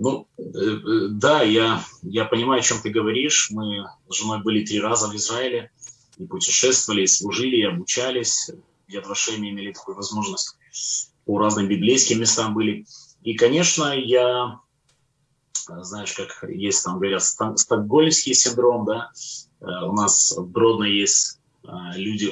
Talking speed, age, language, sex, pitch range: 130 wpm, 20-39, Ukrainian, male, 105-150 Hz